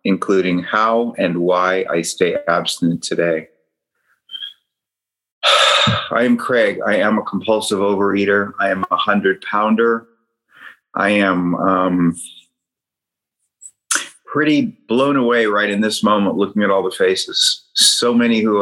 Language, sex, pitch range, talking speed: English, male, 95-115 Hz, 125 wpm